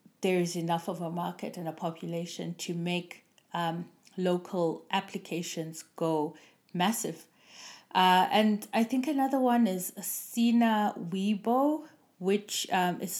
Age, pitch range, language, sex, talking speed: 30-49, 180-220 Hz, English, female, 125 wpm